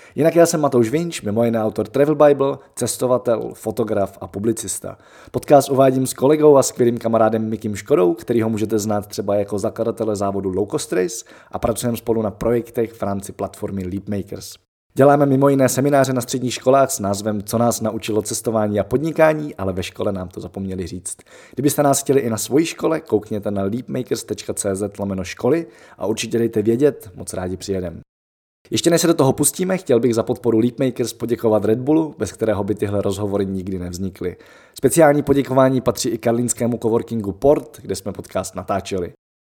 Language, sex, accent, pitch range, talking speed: Czech, male, native, 100-130 Hz, 170 wpm